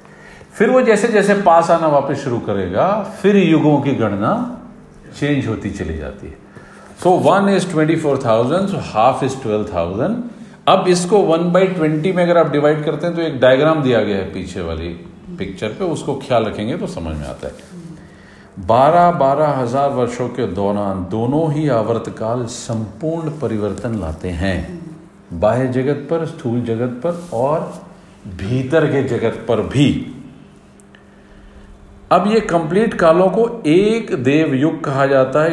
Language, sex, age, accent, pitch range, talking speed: Hindi, male, 50-69, native, 115-170 Hz, 155 wpm